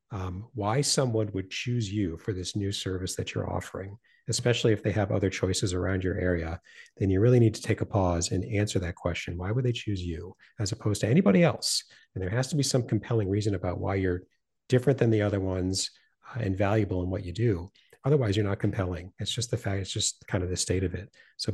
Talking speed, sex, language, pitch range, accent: 235 wpm, male, English, 95-120 Hz, American